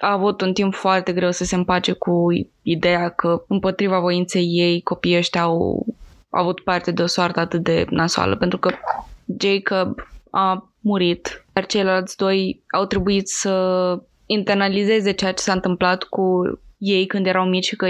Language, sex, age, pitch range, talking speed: Romanian, female, 20-39, 175-190 Hz, 170 wpm